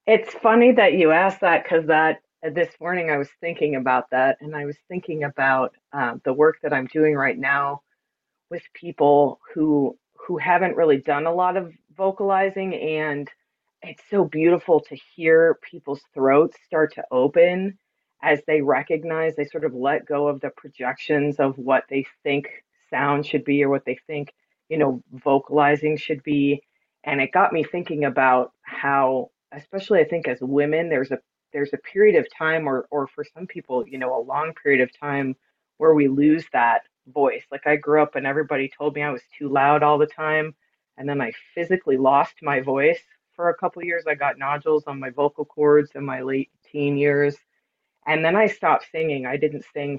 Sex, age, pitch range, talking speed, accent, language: female, 30-49, 140-160 Hz, 195 wpm, American, English